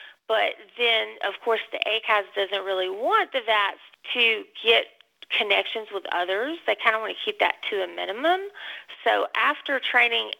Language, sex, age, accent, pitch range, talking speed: English, female, 30-49, American, 185-245 Hz, 165 wpm